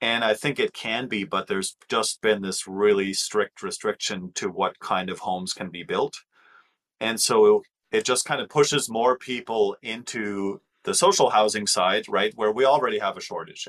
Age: 30-49